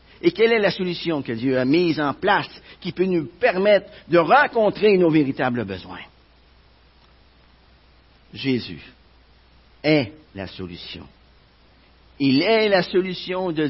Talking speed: 125 wpm